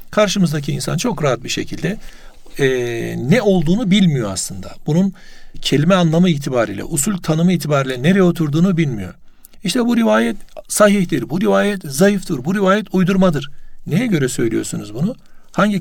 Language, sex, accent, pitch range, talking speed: Turkish, male, native, 140-185 Hz, 135 wpm